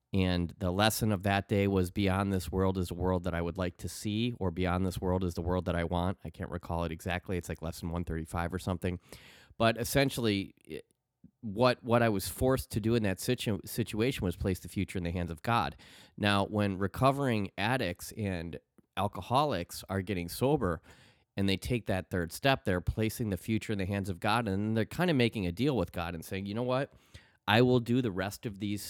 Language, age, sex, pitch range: English, 30-49, male, 90-110 Hz